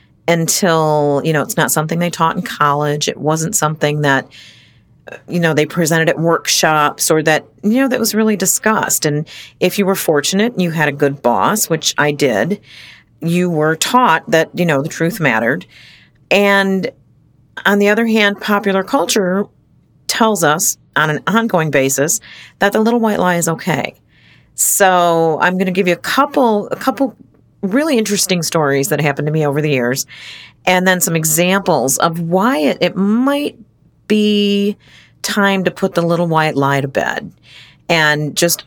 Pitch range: 145-195 Hz